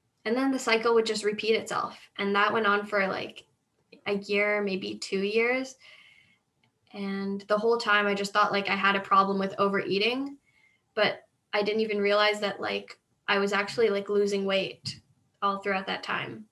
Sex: female